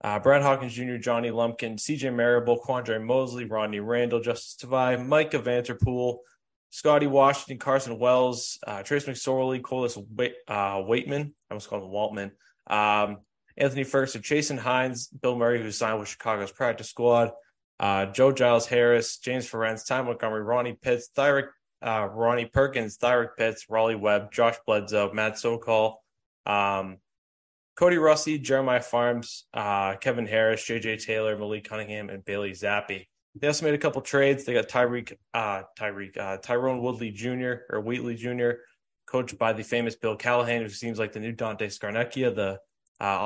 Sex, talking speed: male, 160 wpm